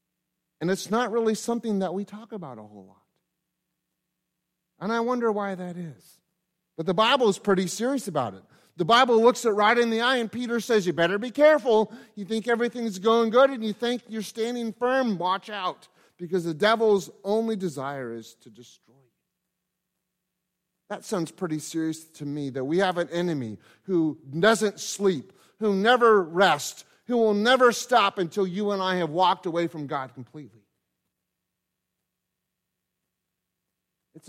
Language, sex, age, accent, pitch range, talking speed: English, male, 30-49, American, 160-215 Hz, 165 wpm